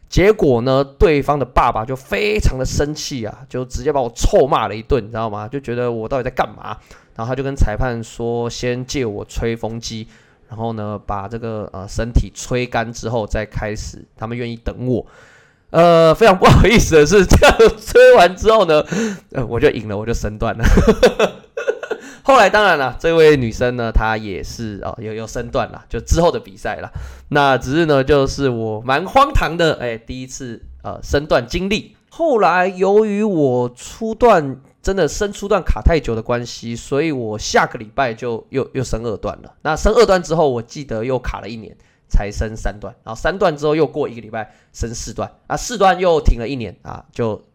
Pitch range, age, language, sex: 110-155 Hz, 20-39, Chinese, male